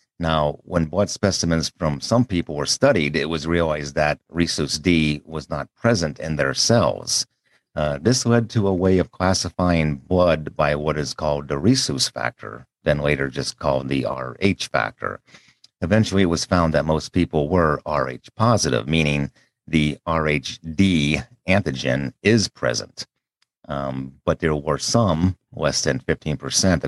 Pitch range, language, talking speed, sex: 75-95 Hz, English, 150 wpm, male